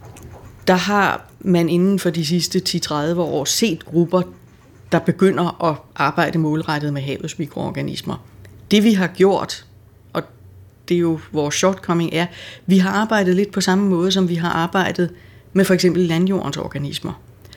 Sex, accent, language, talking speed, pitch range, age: female, native, Danish, 155 wpm, 145-190 Hz, 30-49